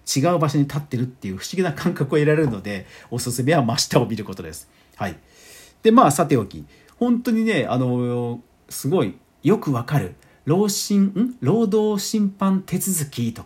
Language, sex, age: Japanese, male, 40-59